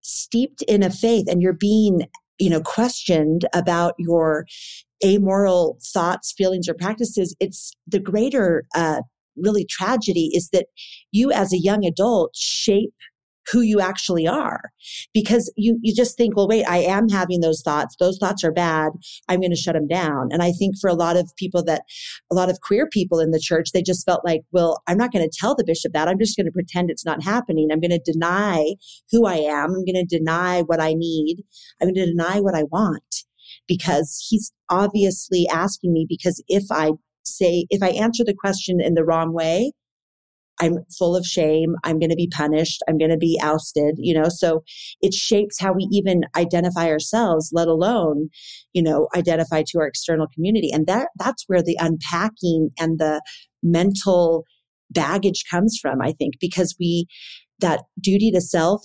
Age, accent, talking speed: 40-59, American, 190 wpm